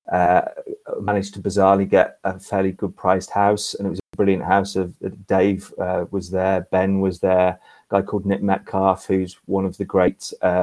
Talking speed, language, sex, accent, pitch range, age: 190 wpm, English, male, British, 95-105 Hz, 30-49